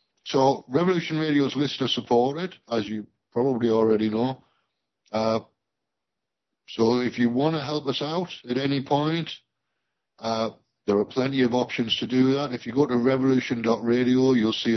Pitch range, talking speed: 110-130 Hz, 155 wpm